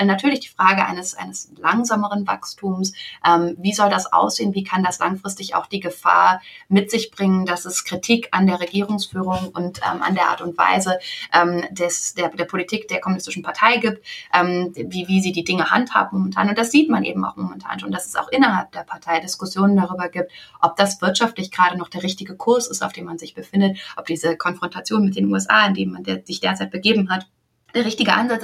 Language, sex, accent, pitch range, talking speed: German, female, German, 175-215 Hz, 205 wpm